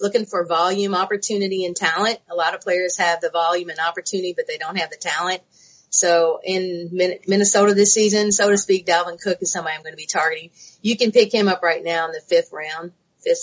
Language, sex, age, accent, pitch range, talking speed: English, female, 30-49, American, 170-200 Hz, 225 wpm